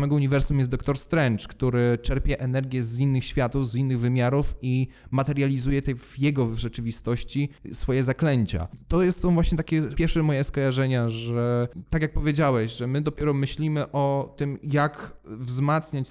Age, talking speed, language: 20-39, 155 wpm, Polish